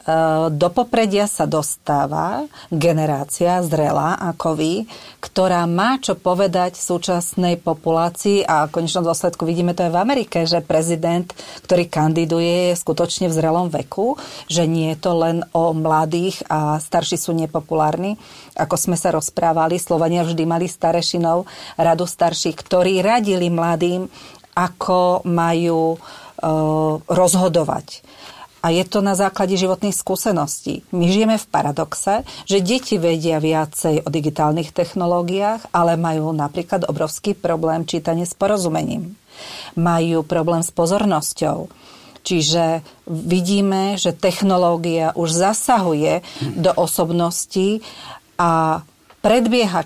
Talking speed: 120 wpm